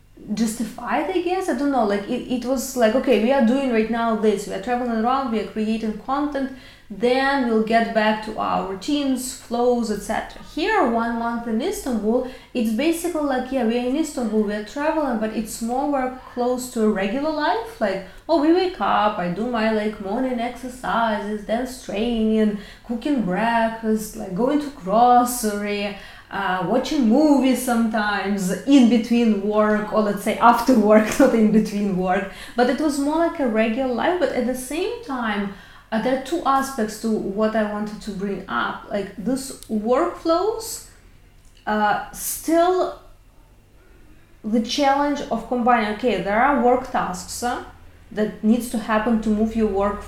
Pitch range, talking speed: 215-260 Hz, 170 wpm